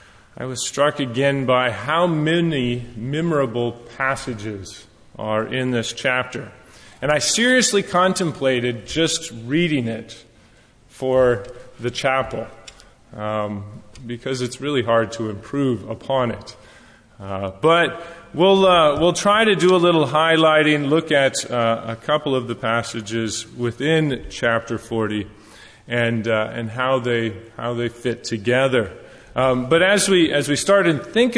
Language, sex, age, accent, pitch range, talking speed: English, male, 30-49, American, 115-160 Hz, 140 wpm